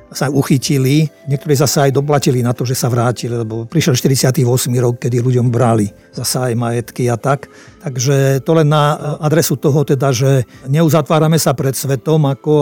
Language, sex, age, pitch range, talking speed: Slovak, male, 50-69, 120-145 Hz, 175 wpm